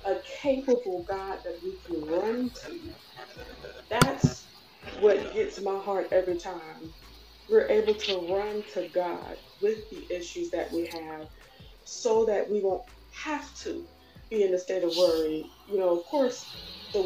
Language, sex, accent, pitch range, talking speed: English, female, American, 180-270 Hz, 155 wpm